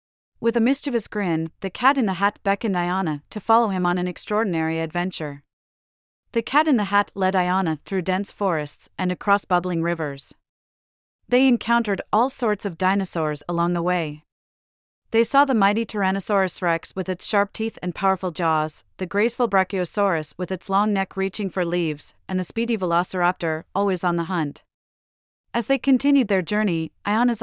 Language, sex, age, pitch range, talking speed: English, female, 40-59, 170-210 Hz, 160 wpm